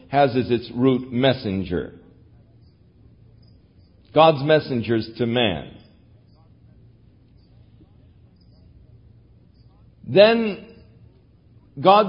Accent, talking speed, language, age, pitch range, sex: American, 55 wpm, English, 50-69, 115-180 Hz, male